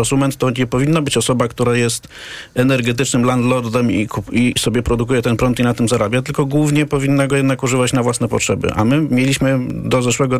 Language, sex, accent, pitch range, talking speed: Polish, male, native, 120-140 Hz, 190 wpm